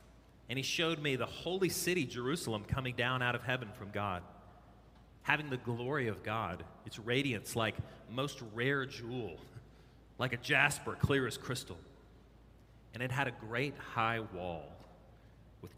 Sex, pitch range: male, 105-130 Hz